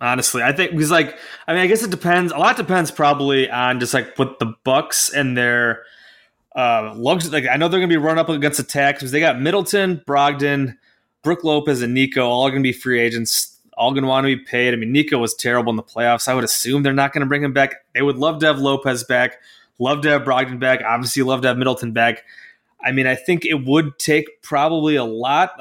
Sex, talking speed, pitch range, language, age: male, 245 wpm, 130-180 Hz, English, 20-39